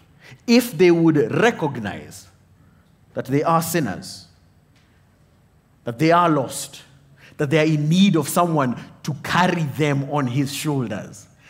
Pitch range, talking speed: 135-185 Hz, 130 wpm